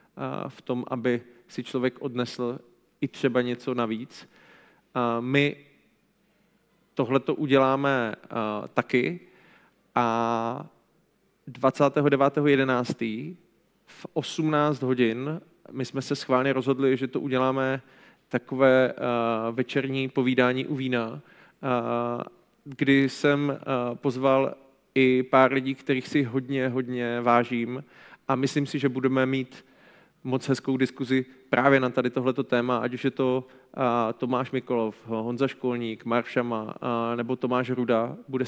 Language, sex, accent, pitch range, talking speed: Czech, male, native, 120-135 Hz, 115 wpm